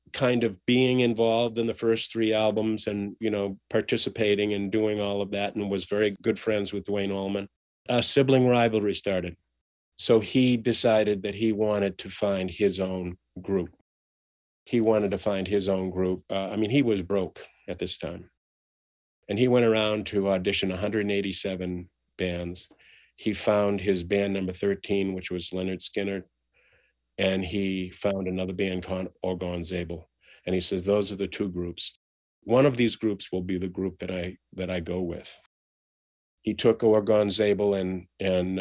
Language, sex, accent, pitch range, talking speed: English, male, American, 90-105 Hz, 170 wpm